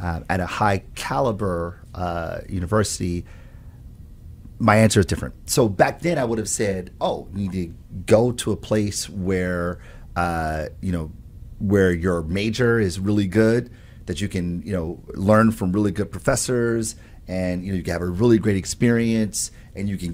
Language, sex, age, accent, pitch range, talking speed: English, male, 30-49, American, 90-110 Hz, 175 wpm